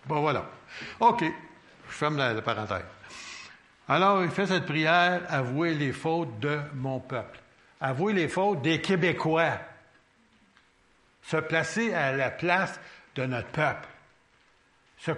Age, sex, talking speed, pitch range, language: 60-79, male, 125 wpm, 115-175 Hz, French